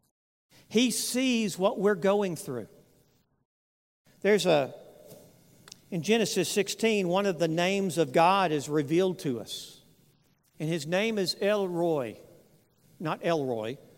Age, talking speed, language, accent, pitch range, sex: 50-69, 125 wpm, English, American, 185-225 Hz, male